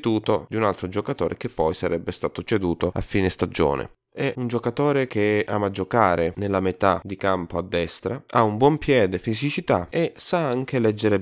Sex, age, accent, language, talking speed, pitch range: male, 20-39, native, Italian, 175 wpm, 90-110 Hz